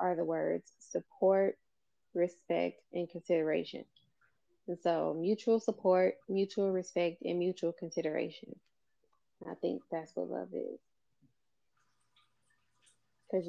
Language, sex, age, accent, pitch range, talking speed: English, female, 20-39, American, 165-220 Hz, 105 wpm